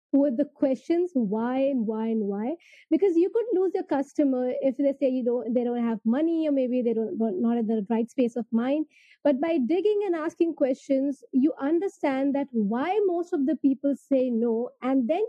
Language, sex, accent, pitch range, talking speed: English, female, Indian, 250-330 Hz, 205 wpm